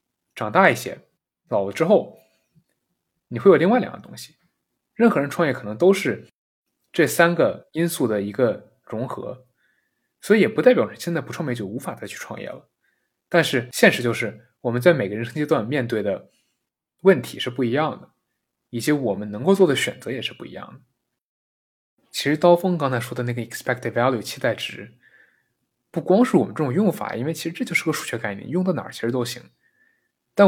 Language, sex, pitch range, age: Chinese, male, 120-175 Hz, 20-39